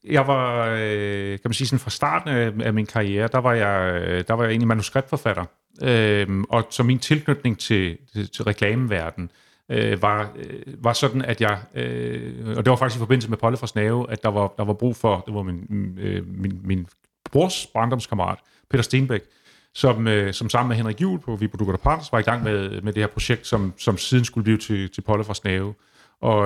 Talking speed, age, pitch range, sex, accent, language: 205 wpm, 30-49, 100-125 Hz, male, native, Danish